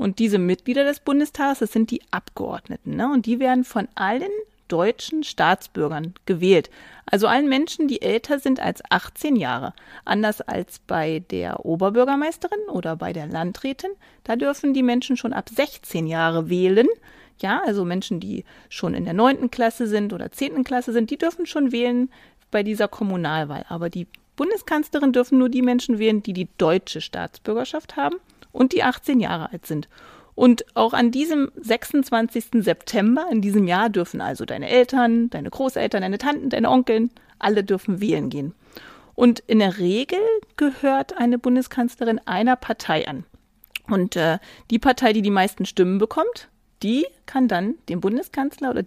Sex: female